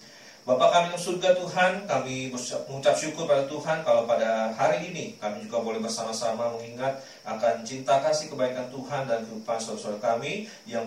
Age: 30-49